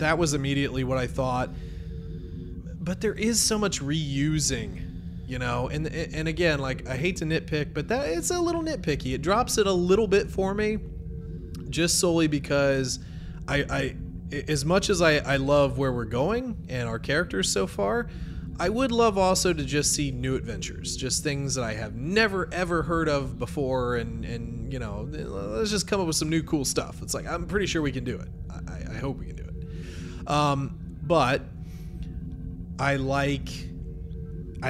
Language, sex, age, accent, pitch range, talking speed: English, male, 20-39, American, 120-155 Hz, 185 wpm